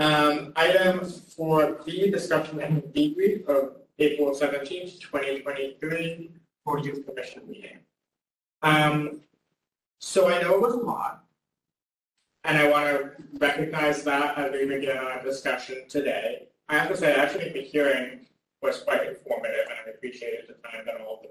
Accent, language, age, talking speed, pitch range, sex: American, English, 30-49, 150 wpm, 135-170 Hz, male